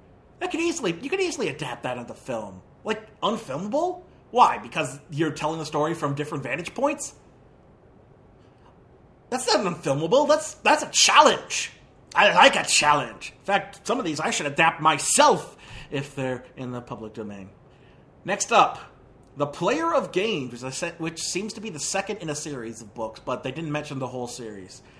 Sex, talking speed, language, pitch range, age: male, 180 wpm, English, 130-165 Hz, 30-49